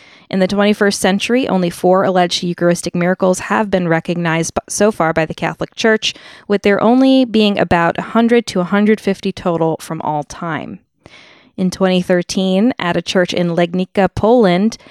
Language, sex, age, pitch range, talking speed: English, female, 20-39, 170-210 Hz, 155 wpm